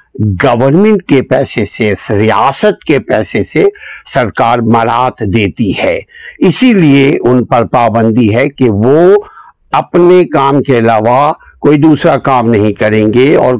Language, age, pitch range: Urdu, 60-79, 120-155 Hz